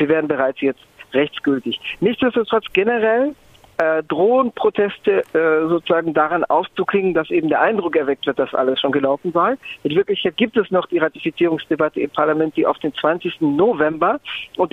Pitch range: 155-205 Hz